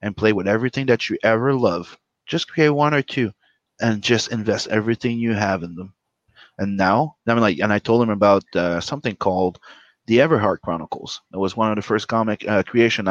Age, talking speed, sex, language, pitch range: 30-49, 210 wpm, male, English, 105-130 Hz